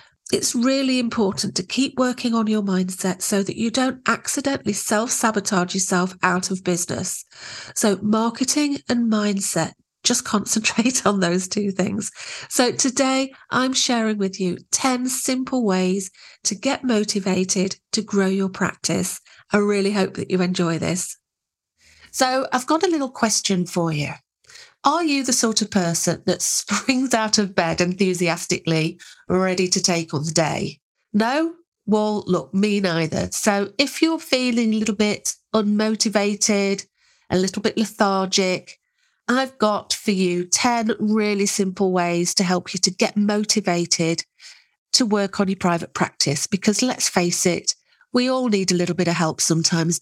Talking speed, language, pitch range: 155 wpm, English, 180-235 Hz